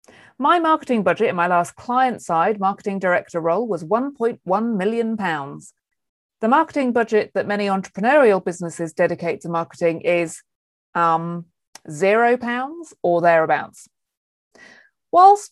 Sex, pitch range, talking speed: female, 170-240 Hz, 110 wpm